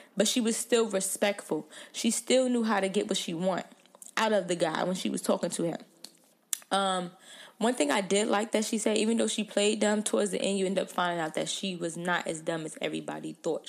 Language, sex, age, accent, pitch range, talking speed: English, female, 20-39, American, 185-245 Hz, 240 wpm